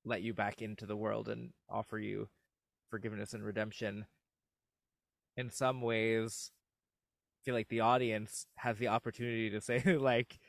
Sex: male